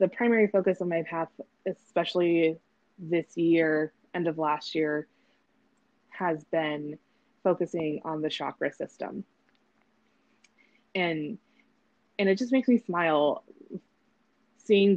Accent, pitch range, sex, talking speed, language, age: American, 155-195 Hz, female, 110 wpm, English, 20-39